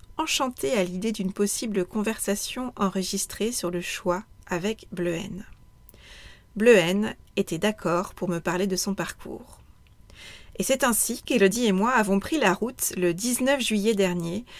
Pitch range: 190-230 Hz